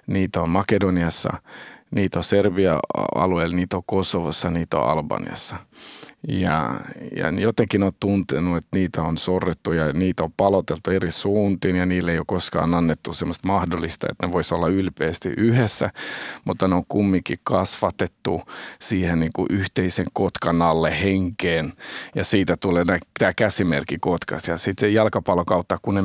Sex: male